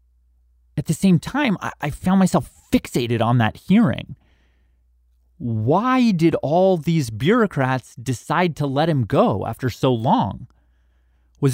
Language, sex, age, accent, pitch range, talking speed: English, male, 30-49, American, 100-165 Hz, 130 wpm